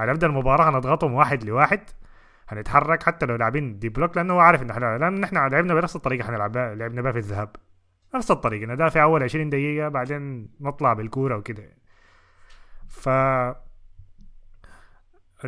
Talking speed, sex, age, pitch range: 140 wpm, male, 20-39, 110-150 Hz